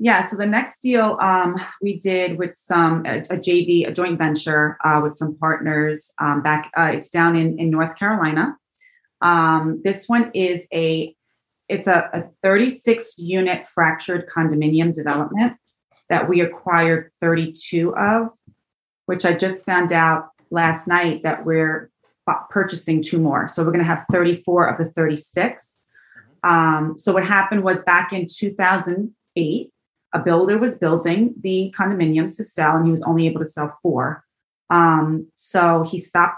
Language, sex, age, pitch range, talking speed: English, female, 30-49, 160-185 Hz, 170 wpm